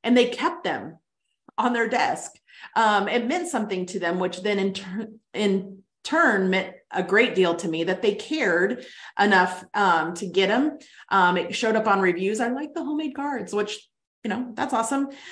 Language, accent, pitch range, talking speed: English, American, 185-245 Hz, 190 wpm